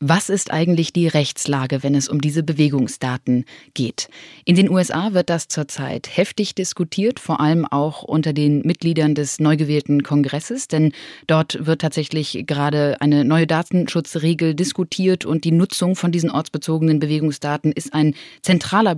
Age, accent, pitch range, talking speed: 20-39, German, 150-185 Hz, 150 wpm